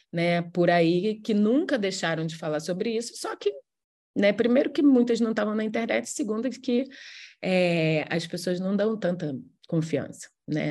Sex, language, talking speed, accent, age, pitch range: female, English, 170 wpm, Brazilian, 20-39, 160-210 Hz